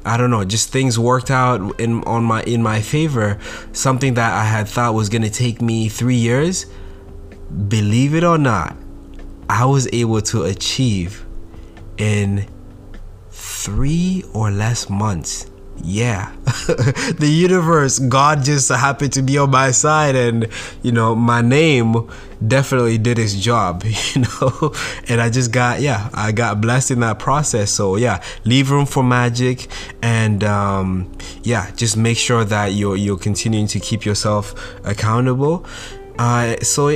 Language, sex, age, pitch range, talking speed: English, male, 20-39, 100-125 Hz, 155 wpm